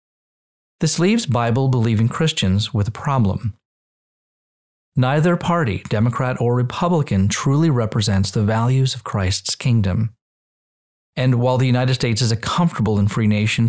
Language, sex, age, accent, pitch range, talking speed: English, male, 40-59, American, 105-135 Hz, 130 wpm